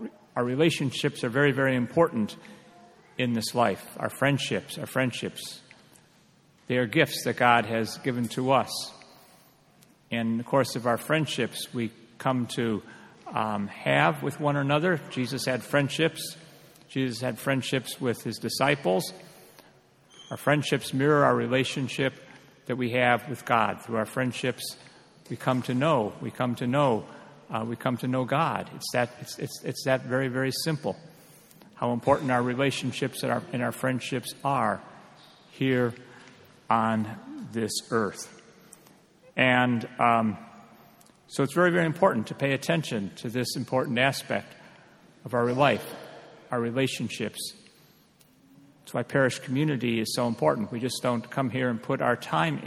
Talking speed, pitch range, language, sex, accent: 150 wpm, 120-140 Hz, English, male, American